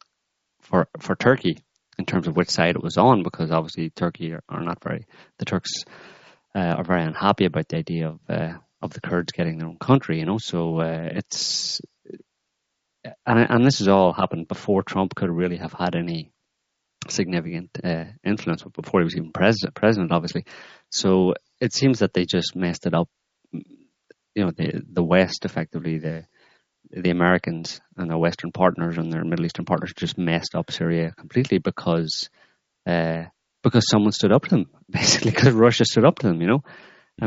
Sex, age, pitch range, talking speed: male, 30-49, 85-100 Hz, 185 wpm